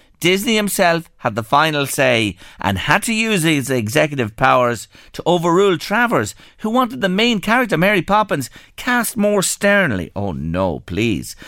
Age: 50-69